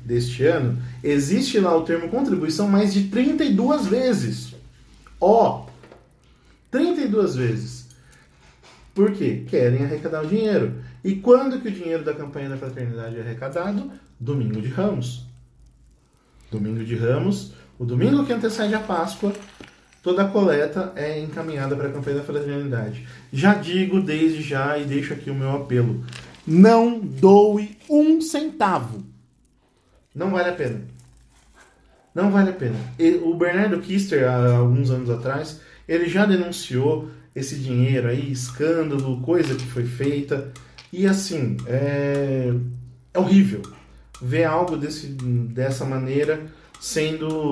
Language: Portuguese